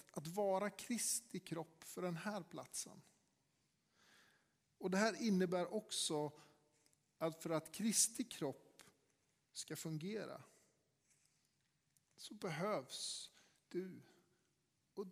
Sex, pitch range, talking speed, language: male, 150-190 Hz, 95 wpm, Swedish